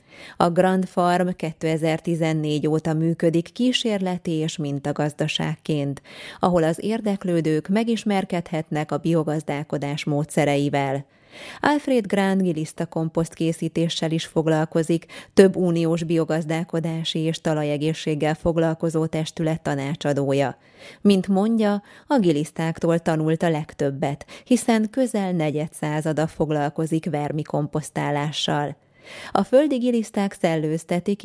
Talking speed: 95 wpm